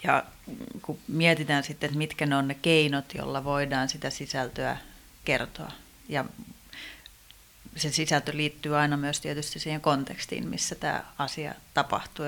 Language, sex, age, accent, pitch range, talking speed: Finnish, female, 30-49, native, 150-165 Hz, 135 wpm